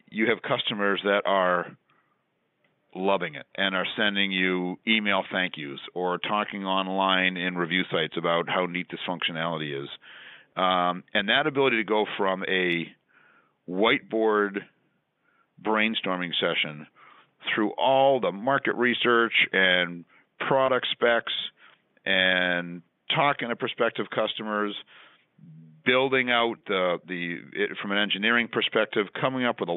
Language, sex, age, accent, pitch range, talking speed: English, male, 50-69, American, 90-110 Hz, 125 wpm